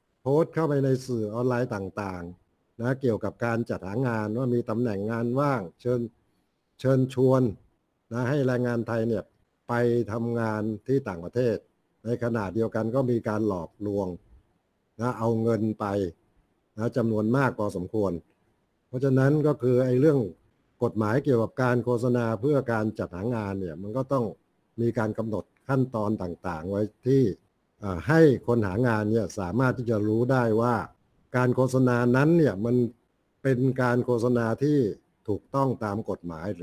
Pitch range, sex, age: 105-130 Hz, male, 60-79